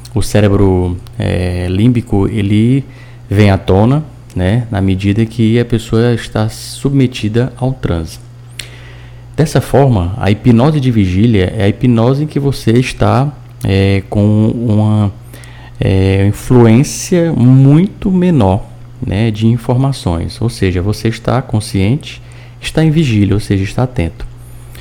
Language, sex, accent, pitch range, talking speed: Portuguese, male, Brazilian, 105-125 Hz, 130 wpm